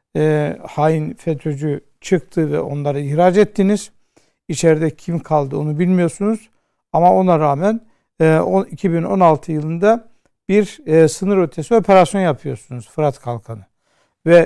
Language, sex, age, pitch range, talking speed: Turkish, male, 60-79, 150-185 Hz, 120 wpm